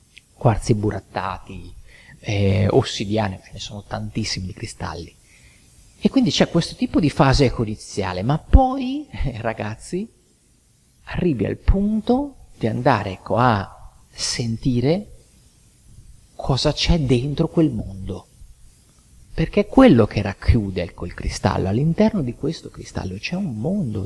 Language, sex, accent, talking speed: Italian, male, native, 115 wpm